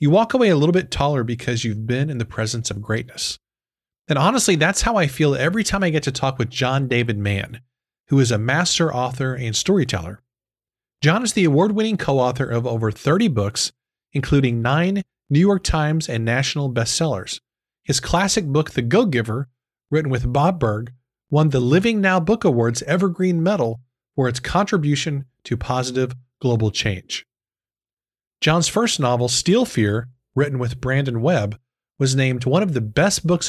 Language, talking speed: English, 170 wpm